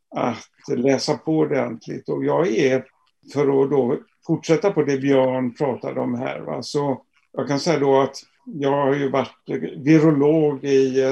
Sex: male